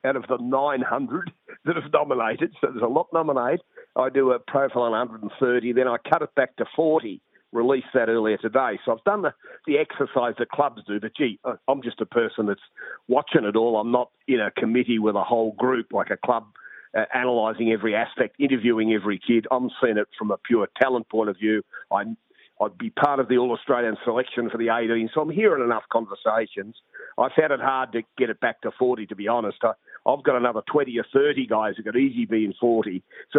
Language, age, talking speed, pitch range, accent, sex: English, 50-69, 215 wpm, 115-140 Hz, Australian, male